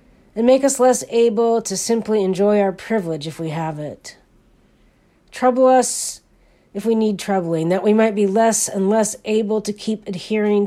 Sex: female